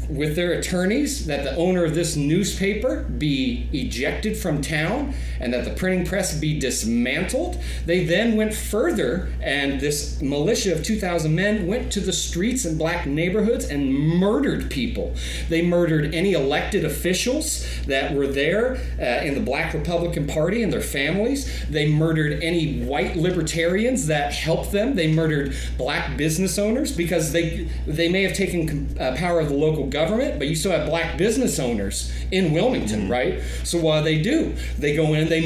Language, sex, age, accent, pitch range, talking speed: English, male, 30-49, American, 140-190 Hz, 175 wpm